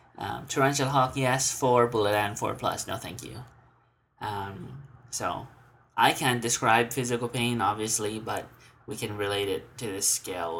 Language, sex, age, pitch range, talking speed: English, male, 20-39, 110-130 Hz, 160 wpm